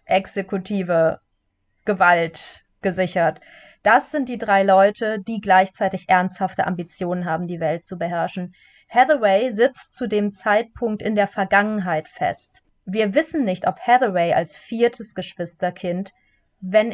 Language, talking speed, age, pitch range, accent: German, 125 wpm, 20-39, 190-250 Hz, German